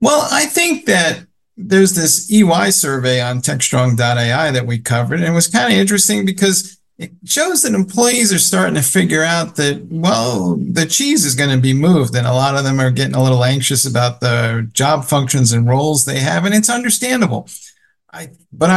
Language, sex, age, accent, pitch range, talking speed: English, male, 50-69, American, 130-185 Hz, 195 wpm